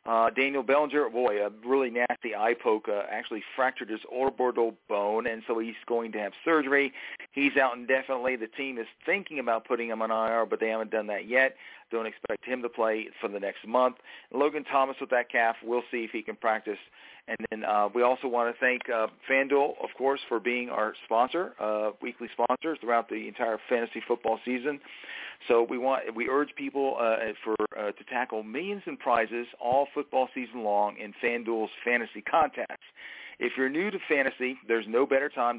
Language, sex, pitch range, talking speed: English, male, 115-135 Hz, 195 wpm